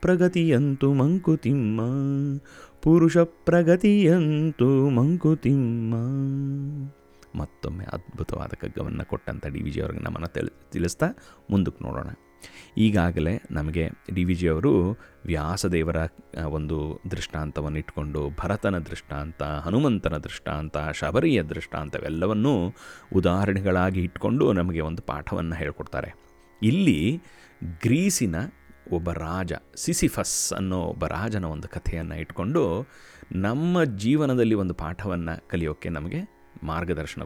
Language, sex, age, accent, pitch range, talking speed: Kannada, male, 30-49, native, 75-125 Hz, 90 wpm